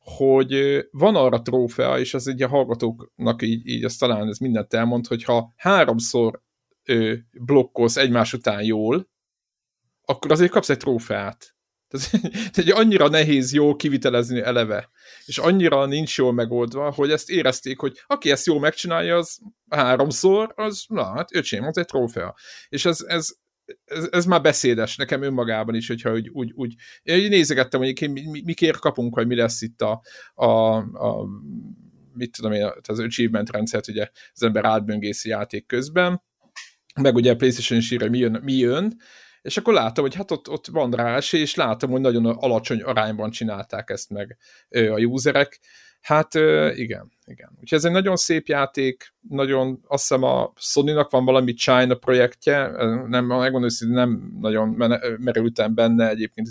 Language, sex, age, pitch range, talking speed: Hungarian, male, 50-69, 115-145 Hz, 160 wpm